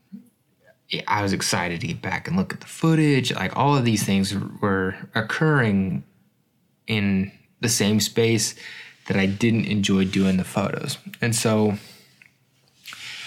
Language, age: English, 20-39